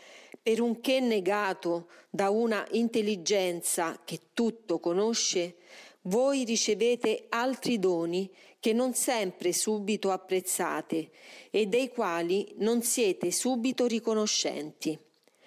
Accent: native